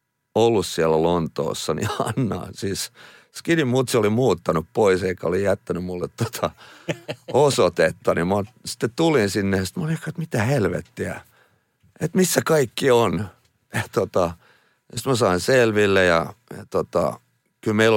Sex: male